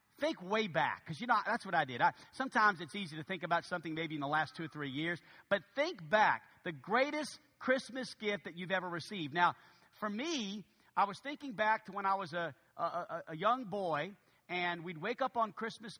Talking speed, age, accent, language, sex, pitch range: 220 wpm, 50-69, American, English, male, 180-250 Hz